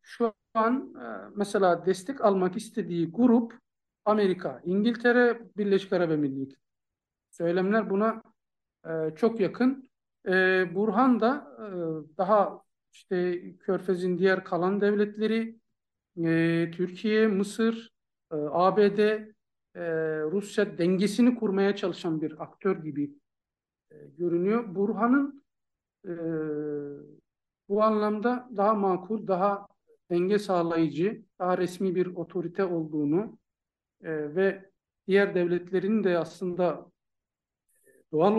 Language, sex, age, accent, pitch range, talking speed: Turkish, male, 50-69, native, 170-220 Hz, 85 wpm